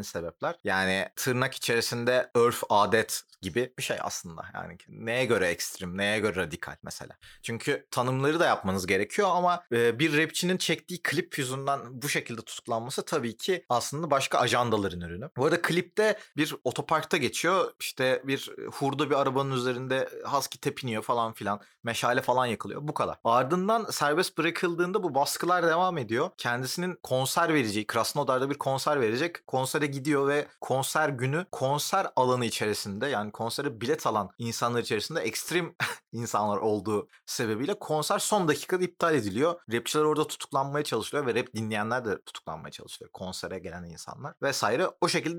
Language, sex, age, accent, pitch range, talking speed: Turkish, male, 30-49, native, 120-160 Hz, 150 wpm